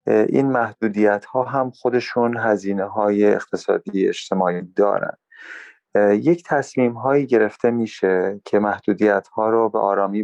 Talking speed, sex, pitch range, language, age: 125 wpm, male, 100-125 Hz, Persian, 30-49